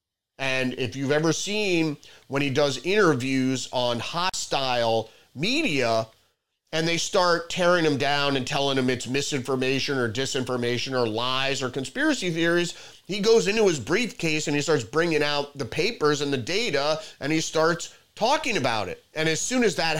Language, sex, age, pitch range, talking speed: English, male, 30-49, 125-155 Hz, 170 wpm